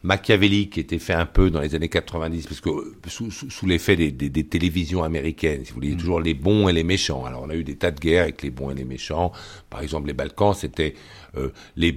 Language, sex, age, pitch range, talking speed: French, male, 60-79, 75-100 Hz, 255 wpm